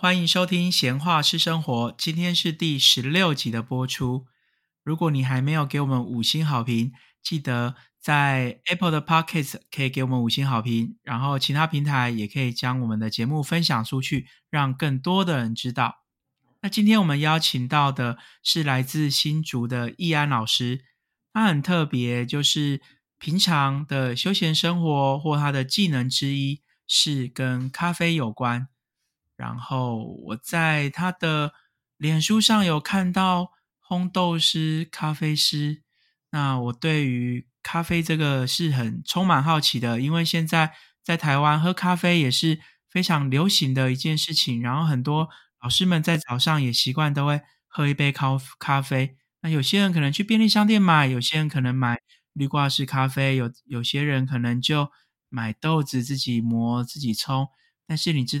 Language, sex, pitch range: Chinese, male, 130-160 Hz